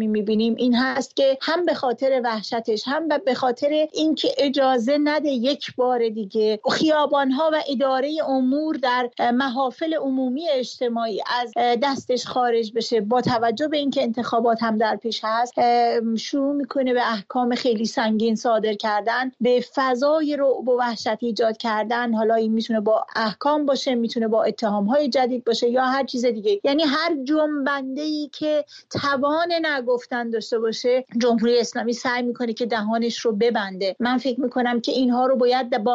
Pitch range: 235-290 Hz